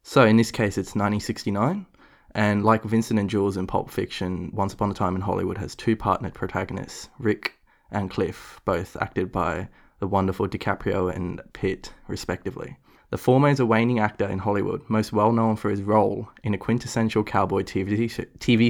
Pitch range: 100-115 Hz